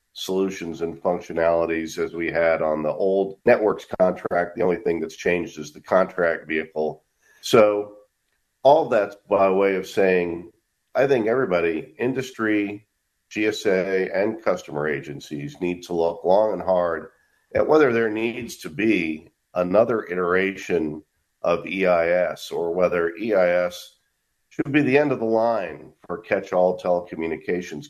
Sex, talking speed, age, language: male, 135 wpm, 50-69, English